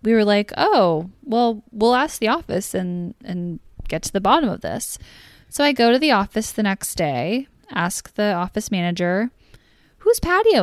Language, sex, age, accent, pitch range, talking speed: English, female, 10-29, American, 180-230 Hz, 180 wpm